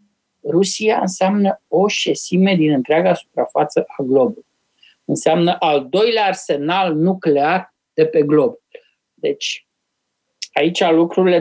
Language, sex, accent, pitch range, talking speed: Romanian, male, native, 180-260 Hz, 105 wpm